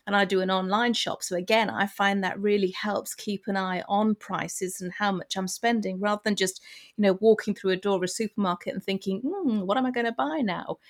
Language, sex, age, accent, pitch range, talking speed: English, female, 40-59, British, 185-240 Hz, 250 wpm